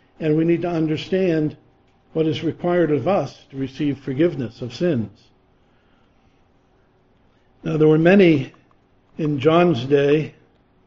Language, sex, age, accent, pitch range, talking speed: English, male, 60-79, American, 130-160 Hz, 120 wpm